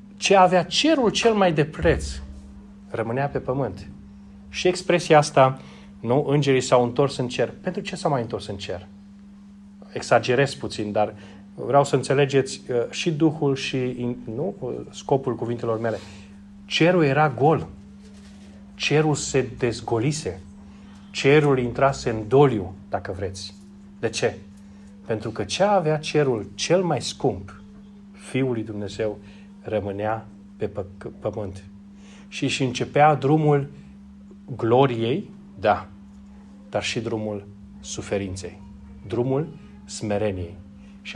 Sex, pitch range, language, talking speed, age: male, 100-150 Hz, Romanian, 115 wpm, 30-49